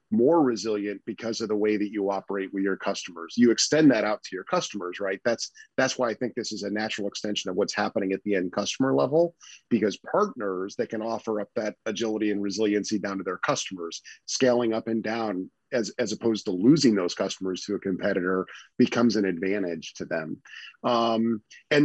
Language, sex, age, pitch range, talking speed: English, male, 40-59, 105-125 Hz, 200 wpm